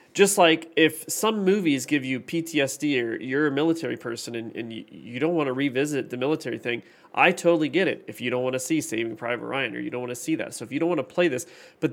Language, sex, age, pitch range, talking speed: English, male, 30-49, 125-165 Hz, 265 wpm